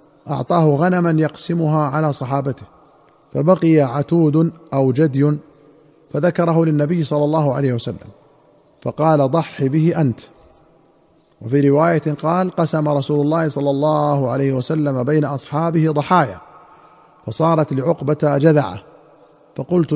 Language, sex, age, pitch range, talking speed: Arabic, male, 50-69, 135-155 Hz, 110 wpm